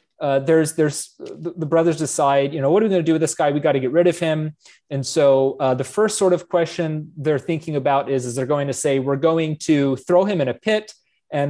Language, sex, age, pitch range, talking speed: English, male, 30-49, 140-185 Hz, 260 wpm